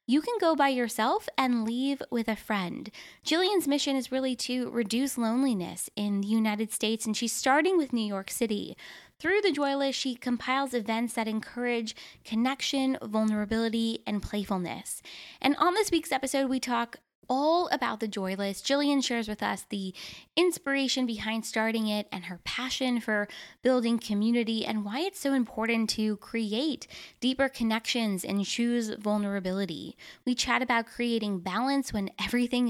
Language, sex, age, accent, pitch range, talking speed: English, female, 10-29, American, 215-270 Hz, 160 wpm